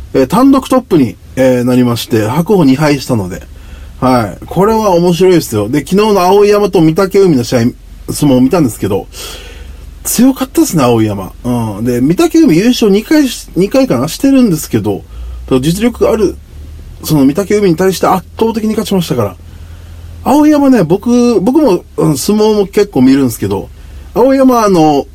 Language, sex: Japanese, male